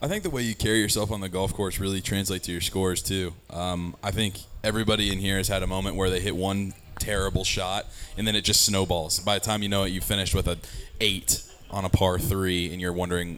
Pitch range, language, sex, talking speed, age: 95-110 Hz, English, male, 250 wpm, 20-39